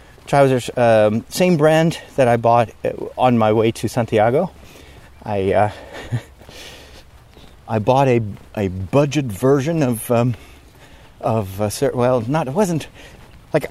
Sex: male